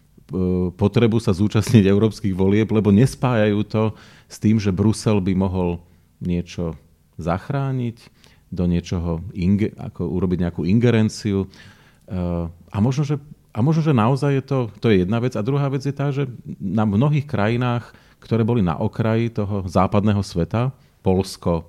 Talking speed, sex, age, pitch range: 145 wpm, male, 40-59, 95-120 Hz